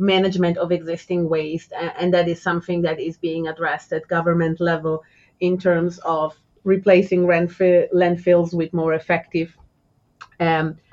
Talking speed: 130 wpm